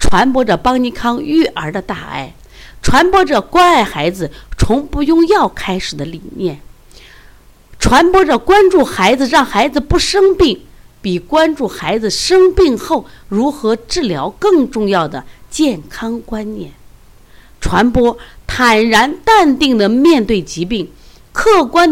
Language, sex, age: Chinese, female, 50-69